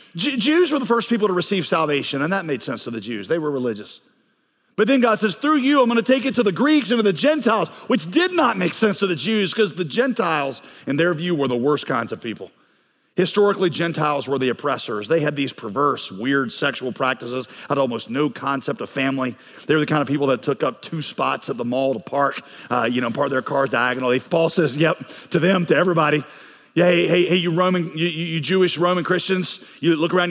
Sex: male